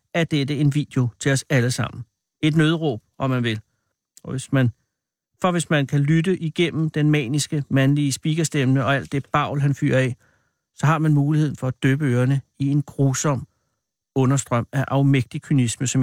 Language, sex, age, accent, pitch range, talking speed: Danish, male, 60-79, native, 125-145 Hz, 180 wpm